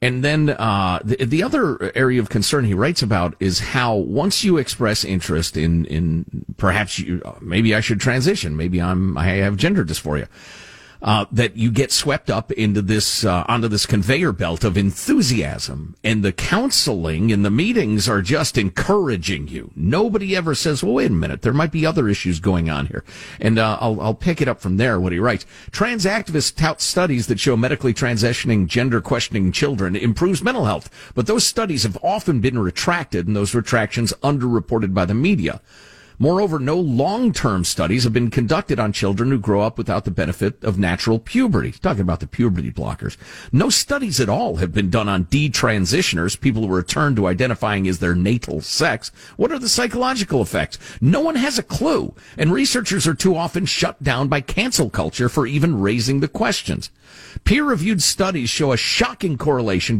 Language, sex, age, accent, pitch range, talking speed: English, male, 50-69, American, 100-155 Hz, 185 wpm